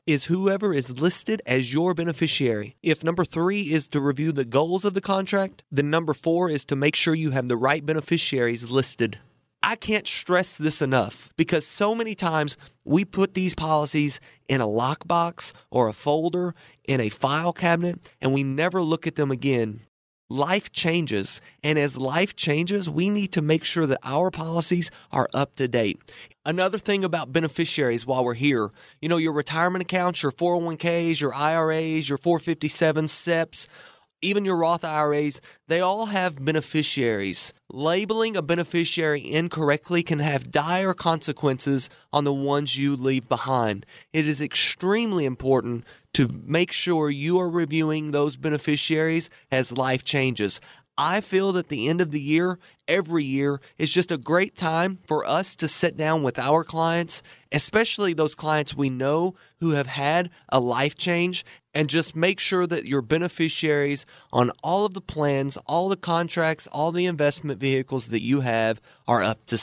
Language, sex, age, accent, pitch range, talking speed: English, male, 30-49, American, 140-175 Hz, 165 wpm